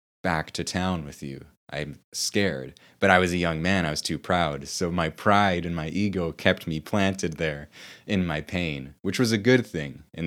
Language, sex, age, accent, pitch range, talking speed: English, male, 20-39, American, 75-90 Hz, 210 wpm